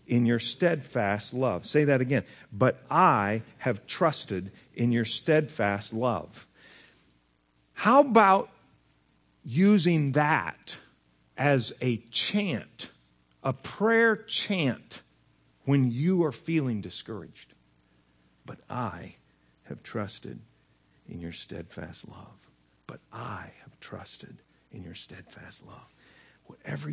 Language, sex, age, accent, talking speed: English, male, 50-69, American, 105 wpm